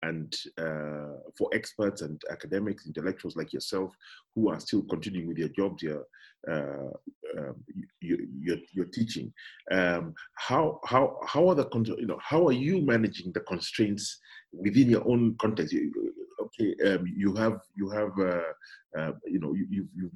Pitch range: 85-110 Hz